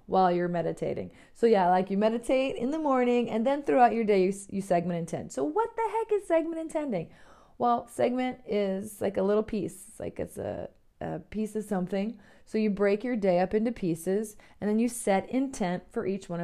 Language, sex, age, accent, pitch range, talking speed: English, female, 30-49, American, 185-240 Hz, 210 wpm